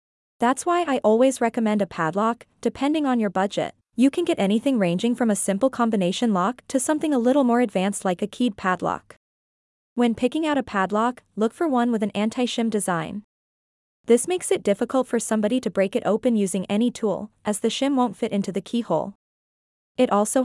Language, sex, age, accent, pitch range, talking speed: English, female, 20-39, American, 200-255 Hz, 195 wpm